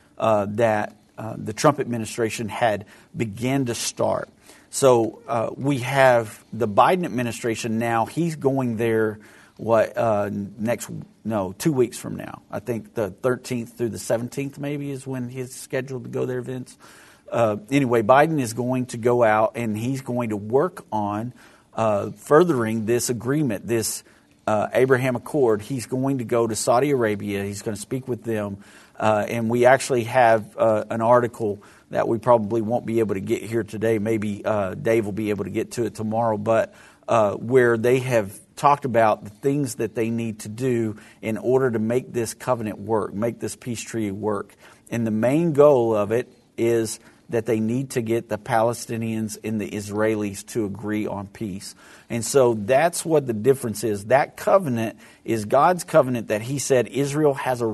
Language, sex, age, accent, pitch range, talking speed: English, male, 50-69, American, 110-125 Hz, 180 wpm